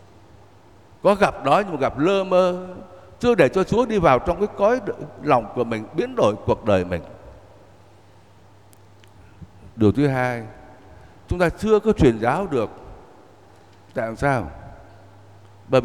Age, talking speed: 60-79, 145 wpm